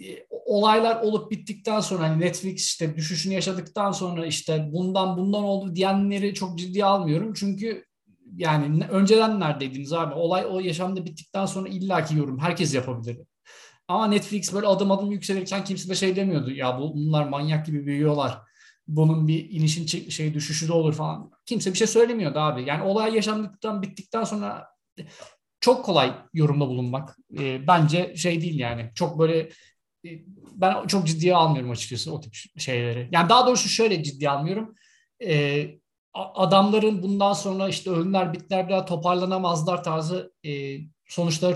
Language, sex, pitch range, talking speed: Turkish, male, 150-195 Hz, 145 wpm